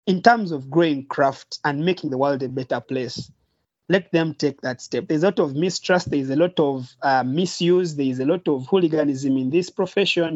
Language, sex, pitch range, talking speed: English, male, 145-180 Hz, 210 wpm